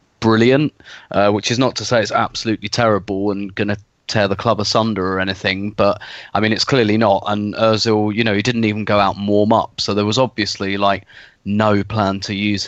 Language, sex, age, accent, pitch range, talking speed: English, male, 20-39, British, 105-120 Hz, 215 wpm